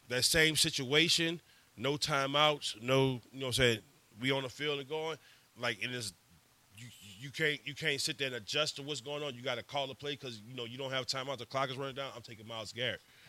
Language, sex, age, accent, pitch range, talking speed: English, male, 30-49, American, 120-145 Hz, 250 wpm